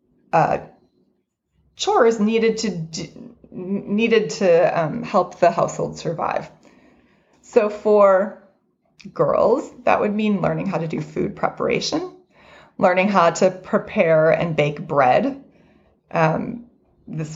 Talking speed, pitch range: 110 wpm, 170-215 Hz